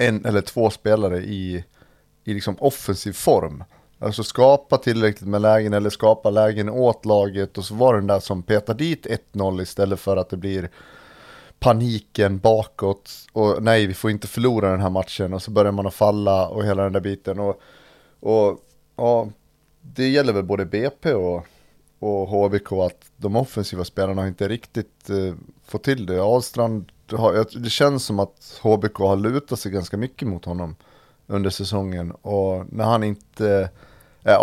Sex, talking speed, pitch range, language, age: male, 165 wpm, 100-115 Hz, Swedish, 30-49